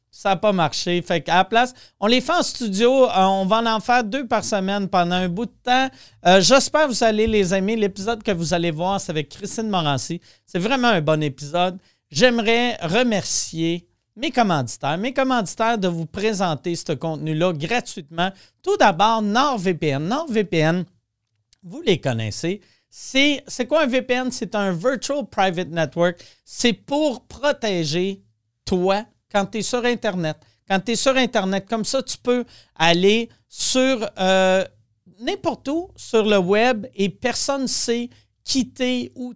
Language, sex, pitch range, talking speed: French, male, 170-235 Hz, 160 wpm